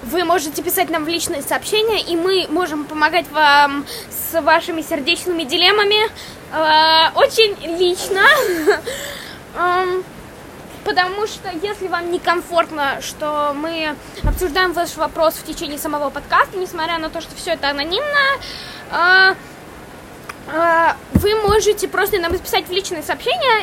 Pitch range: 320-395 Hz